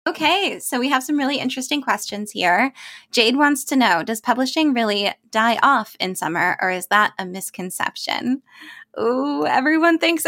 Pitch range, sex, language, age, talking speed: 200-270 Hz, female, English, 20-39, 165 wpm